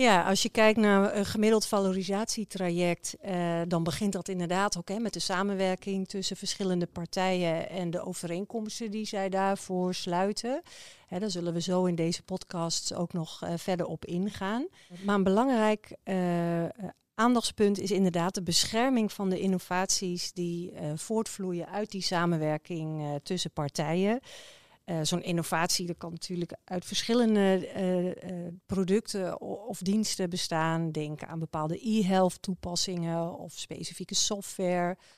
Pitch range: 170-200 Hz